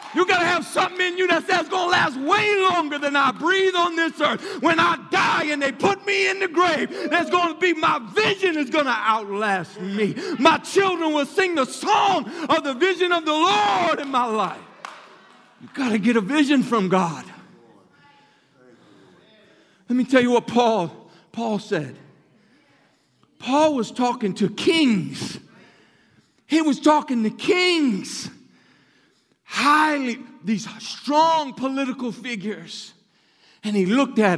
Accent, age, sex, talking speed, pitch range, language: American, 50-69, male, 150 wpm, 195-315 Hz, English